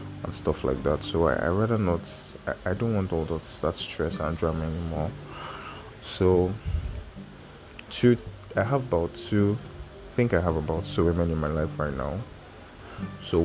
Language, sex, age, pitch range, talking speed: English, male, 20-39, 80-95 Hz, 175 wpm